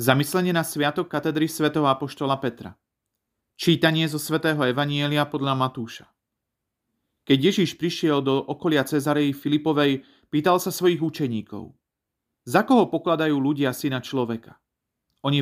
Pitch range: 130-160 Hz